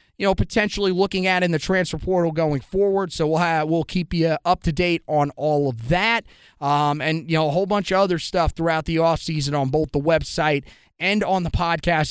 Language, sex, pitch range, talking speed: English, male, 155-190 Hz, 225 wpm